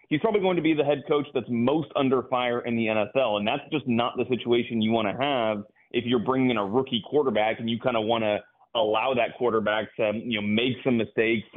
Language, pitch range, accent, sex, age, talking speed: English, 110-135 Hz, American, male, 30-49, 245 wpm